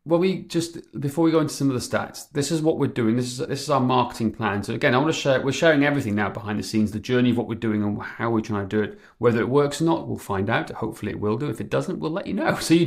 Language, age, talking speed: English, 30-49, 325 wpm